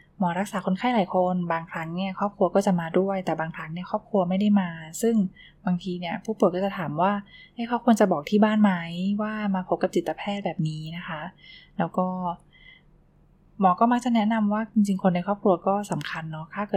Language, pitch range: Thai, 175-205 Hz